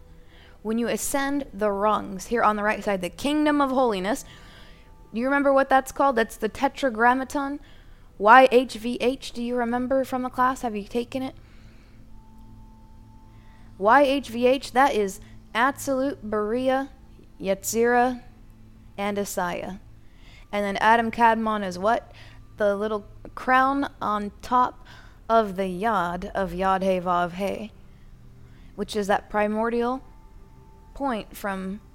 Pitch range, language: 190-250 Hz, English